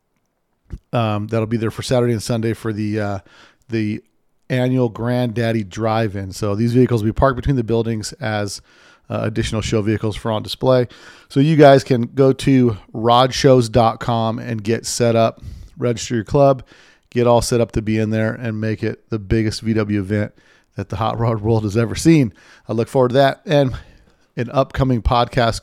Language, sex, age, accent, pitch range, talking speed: English, male, 40-59, American, 105-125 Hz, 185 wpm